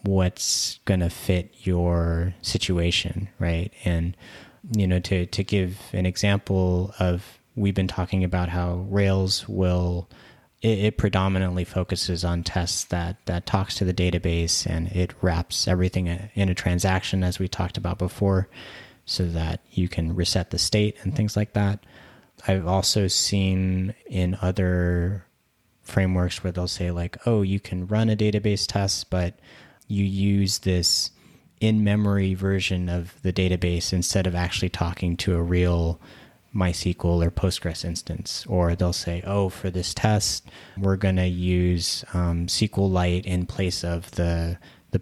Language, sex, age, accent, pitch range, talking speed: English, male, 30-49, American, 90-100 Hz, 150 wpm